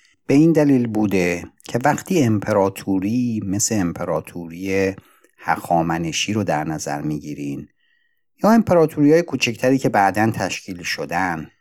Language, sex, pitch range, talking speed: Persian, male, 95-125 Hz, 120 wpm